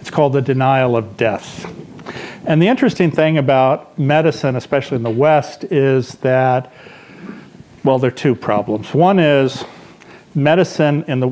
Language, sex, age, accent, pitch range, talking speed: English, male, 50-69, American, 120-145 Hz, 150 wpm